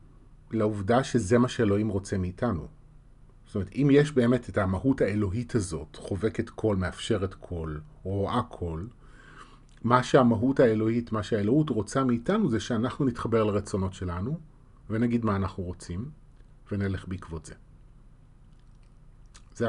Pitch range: 100-130 Hz